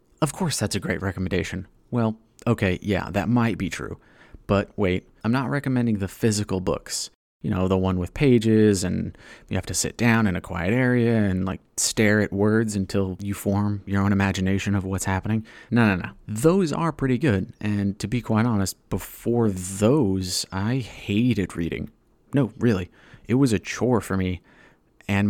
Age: 30-49